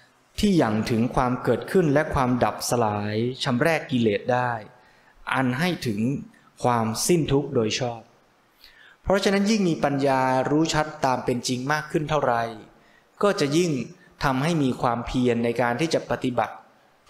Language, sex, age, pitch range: Thai, male, 20-39, 120-155 Hz